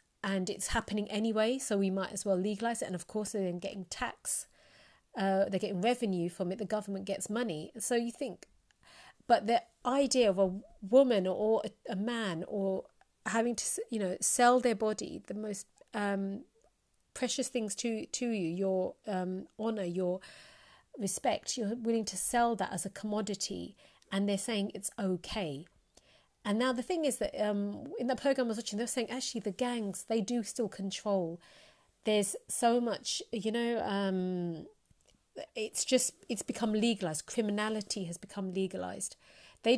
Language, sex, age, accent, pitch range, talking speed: English, female, 40-59, British, 195-235 Hz, 165 wpm